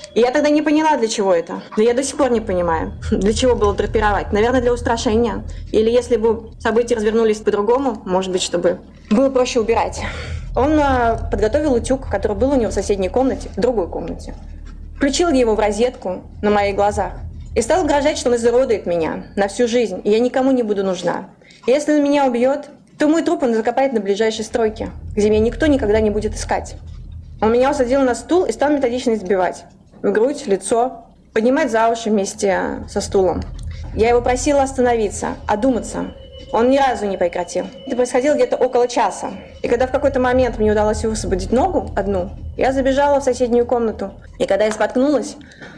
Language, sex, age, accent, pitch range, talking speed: Russian, female, 20-39, native, 210-265 Hz, 180 wpm